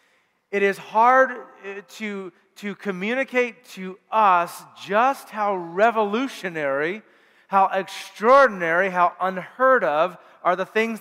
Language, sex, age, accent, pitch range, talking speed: English, male, 40-59, American, 175-210 Hz, 105 wpm